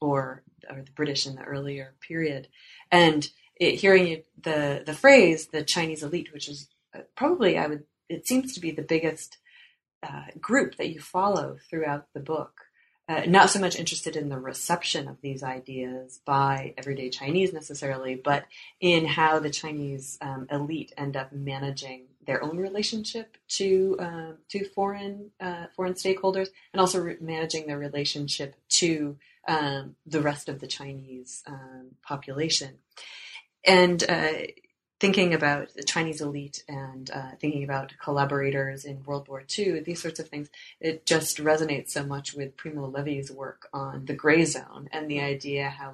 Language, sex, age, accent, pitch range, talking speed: English, female, 30-49, American, 140-165 Hz, 160 wpm